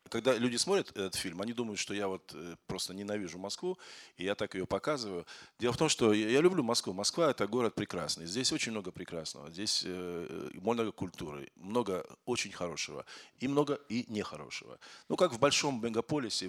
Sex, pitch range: male, 90-120 Hz